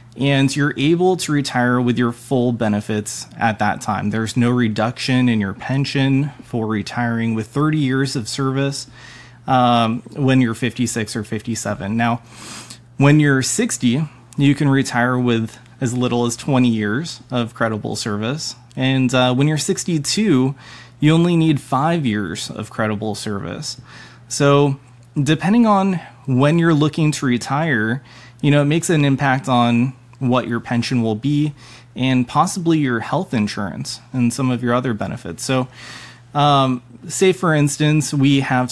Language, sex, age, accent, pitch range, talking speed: English, male, 20-39, American, 120-140 Hz, 150 wpm